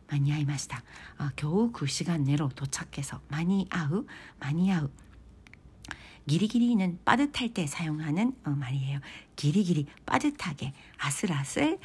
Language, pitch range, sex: Korean, 140-205 Hz, female